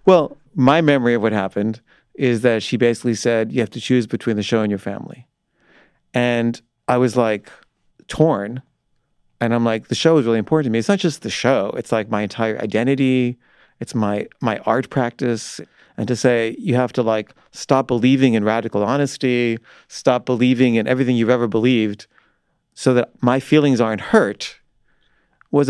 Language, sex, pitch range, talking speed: English, male, 115-135 Hz, 180 wpm